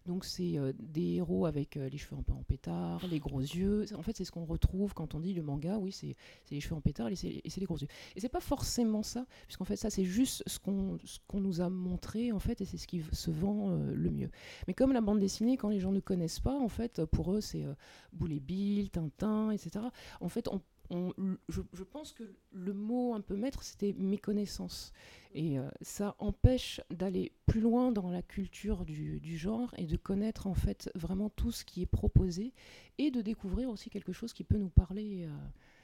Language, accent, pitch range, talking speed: French, French, 165-210 Hz, 235 wpm